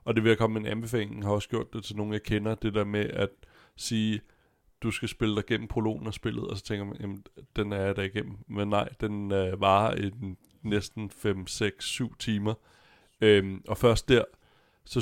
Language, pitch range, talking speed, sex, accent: Danish, 95-110 Hz, 220 wpm, male, native